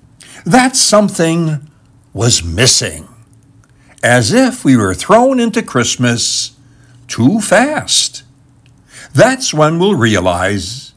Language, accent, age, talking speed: English, American, 60-79, 95 wpm